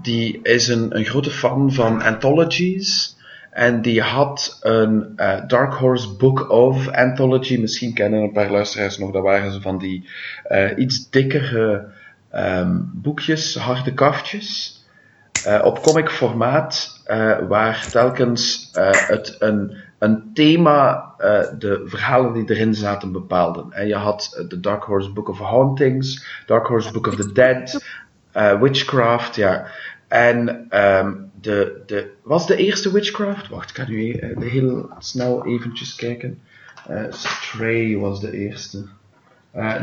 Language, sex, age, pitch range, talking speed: English, male, 30-49, 110-135 Hz, 140 wpm